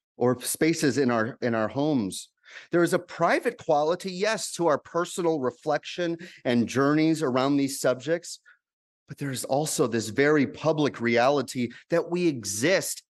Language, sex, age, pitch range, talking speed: English, male, 30-49, 125-170 Hz, 145 wpm